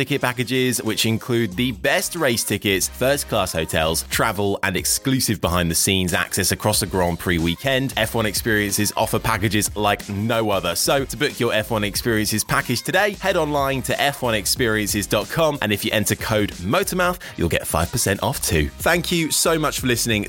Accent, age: British, 20-39